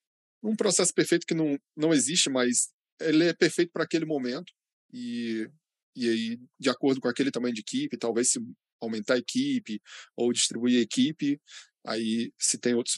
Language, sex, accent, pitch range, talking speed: Portuguese, male, Brazilian, 115-150 Hz, 170 wpm